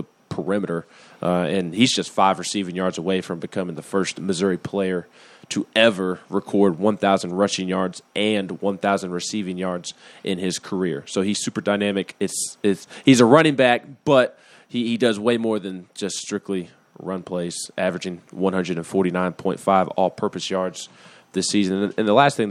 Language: English